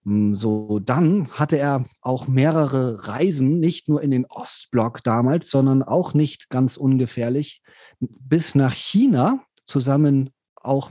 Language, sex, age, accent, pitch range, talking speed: English, male, 40-59, German, 125-155 Hz, 125 wpm